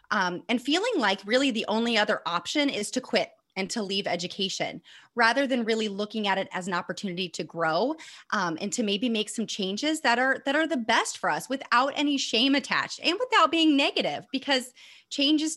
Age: 30-49